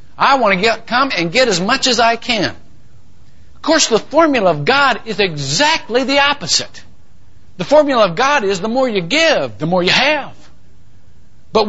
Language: English